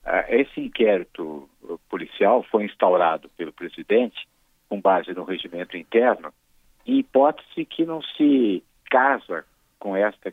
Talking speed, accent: 115 wpm, Brazilian